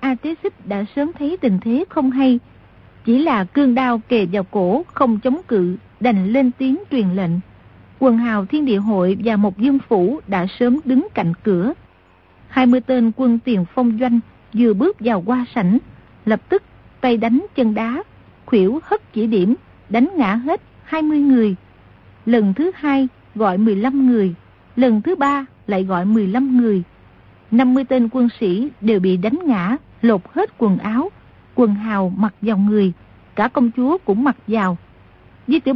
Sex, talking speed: female, 180 wpm